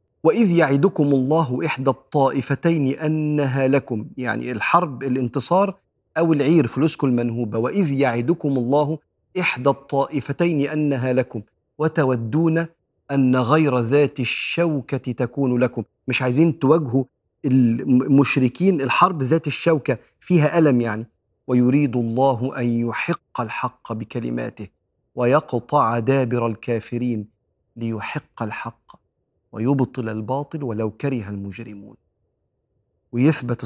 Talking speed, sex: 100 wpm, male